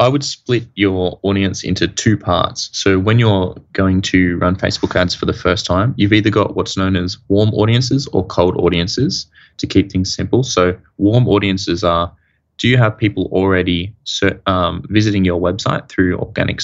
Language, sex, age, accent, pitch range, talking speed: English, male, 20-39, Australian, 90-100 Hz, 180 wpm